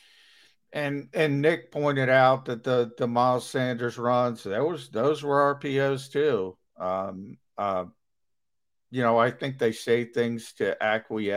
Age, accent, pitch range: 50-69, American, 110-135 Hz